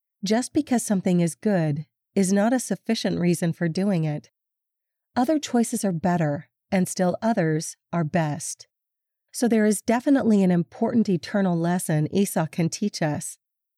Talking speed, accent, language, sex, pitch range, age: 150 wpm, American, English, female, 170-215 Hz, 40-59